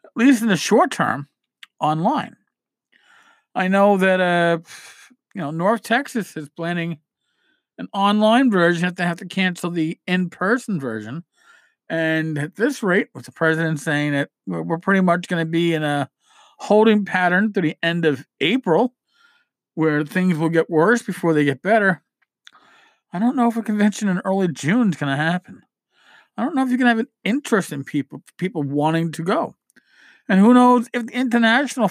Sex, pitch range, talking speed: male, 155-235 Hz, 180 wpm